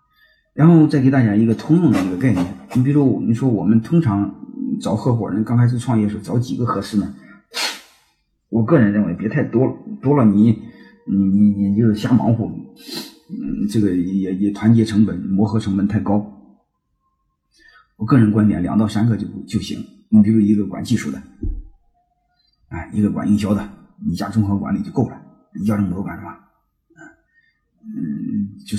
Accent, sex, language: native, male, Chinese